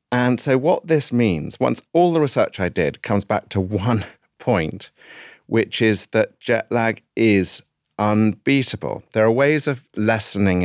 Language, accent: English, British